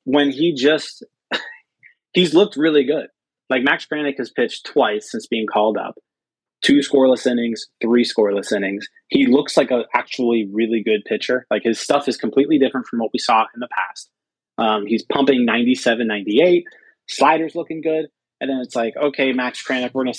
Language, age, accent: English, 30-49, American